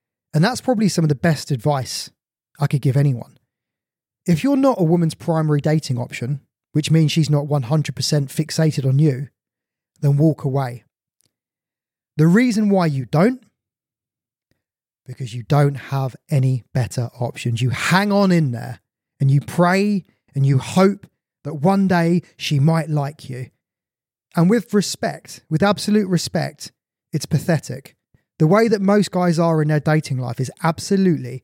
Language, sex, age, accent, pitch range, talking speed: English, male, 20-39, British, 135-175 Hz, 155 wpm